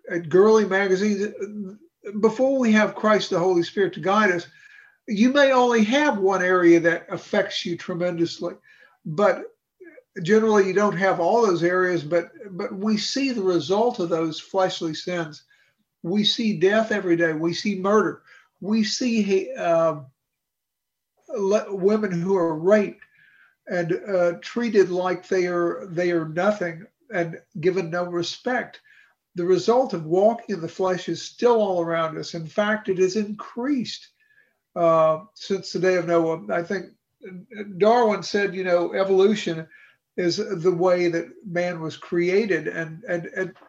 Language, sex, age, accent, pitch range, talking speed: English, male, 60-79, American, 170-210 Hz, 150 wpm